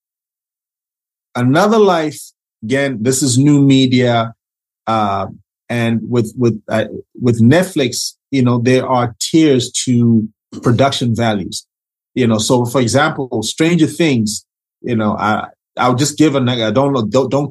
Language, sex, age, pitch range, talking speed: English, male, 30-49, 115-140 Hz, 135 wpm